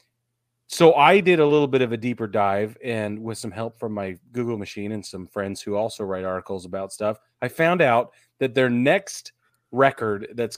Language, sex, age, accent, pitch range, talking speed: English, male, 30-49, American, 110-145 Hz, 200 wpm